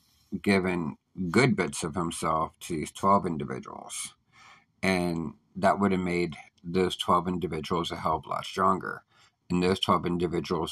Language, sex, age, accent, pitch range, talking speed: English, male, 50-69, American, 85-95 Hz, 150 wpm